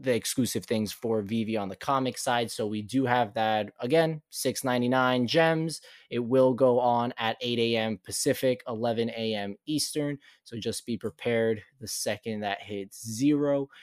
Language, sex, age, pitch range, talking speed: English, male, 20-39, 115-135 Hz, 160 wpm